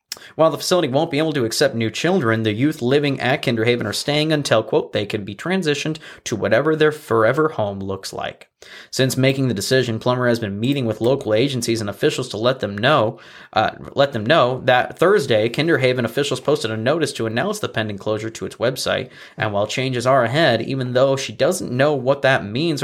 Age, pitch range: 20-39, 115-145 Hz